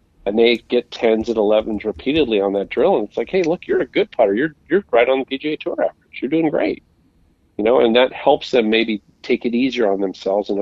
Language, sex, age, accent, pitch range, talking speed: English, male, 40-59, American, 100-130 Hz, 245 wpm